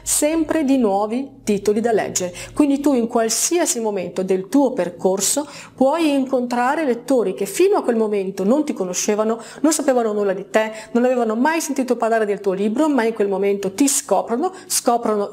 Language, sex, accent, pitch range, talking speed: Italian, female, native, 200-270 Hz, 175 wpm